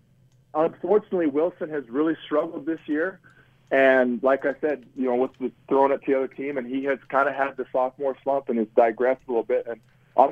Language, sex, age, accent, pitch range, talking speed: English, male, 40-59, American, 130-160 Hz, 215 wpm